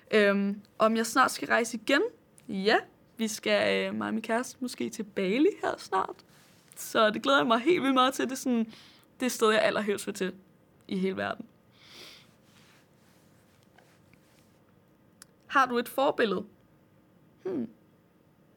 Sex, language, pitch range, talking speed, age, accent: female, Danish, 210-270 Hz, 140 wpm, 20-39, native